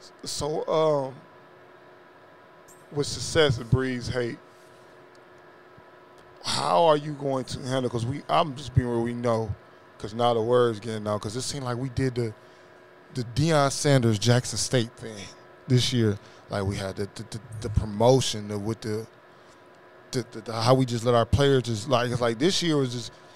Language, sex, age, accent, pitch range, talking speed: English, male, 20-39, American, 110-140 Hz, 175 wpm